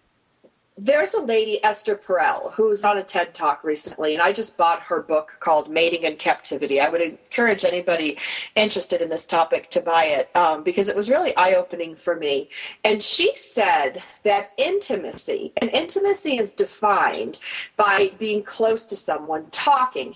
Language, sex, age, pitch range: English, female, 40-59, 185-265 Hz